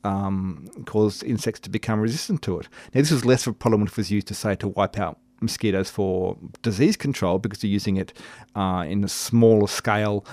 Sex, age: male, 40-59